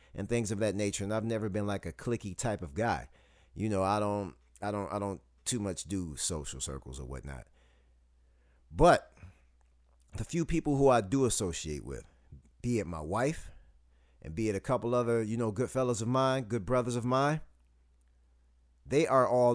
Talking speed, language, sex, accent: 190 wpm, English, male, American